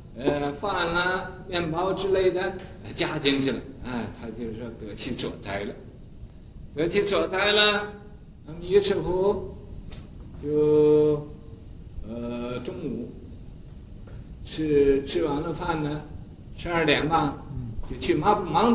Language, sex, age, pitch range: Chinese, male, 60-79, 120-175 Hz